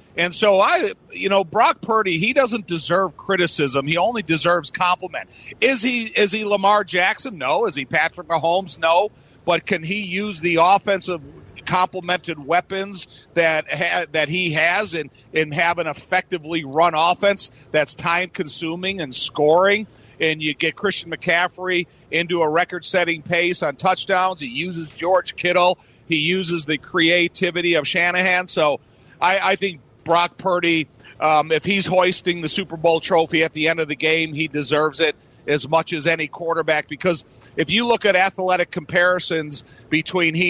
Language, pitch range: English, 155-185 Hz